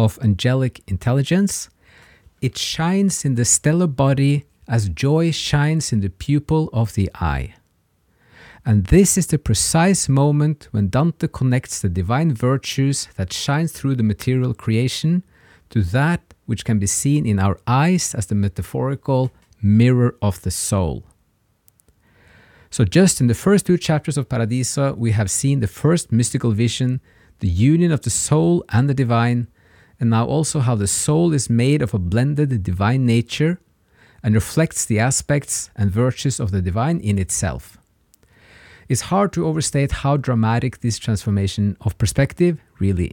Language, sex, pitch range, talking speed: English, male, 100-145 Hz, 155 wpm